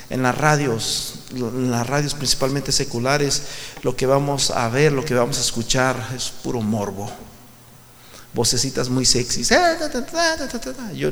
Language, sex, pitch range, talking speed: Spanish, male, 125-165 Hz, 135 wpm